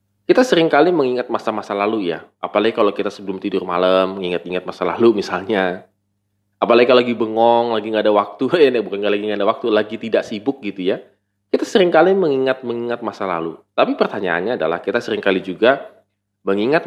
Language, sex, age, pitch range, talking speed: Indonesian, male, 20-39, 100-125 Hz, 175 wpm